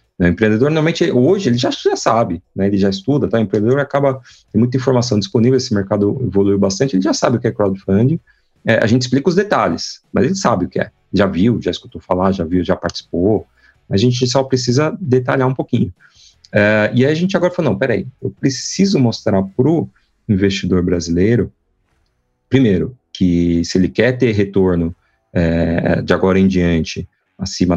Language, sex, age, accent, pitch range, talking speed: Portuguese, male, 40-59, Brazilian, 95-130 Hz, 190 wpm